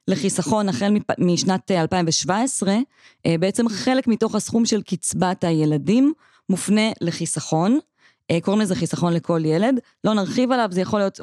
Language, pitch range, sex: Hebrew, 160-215 Hz, female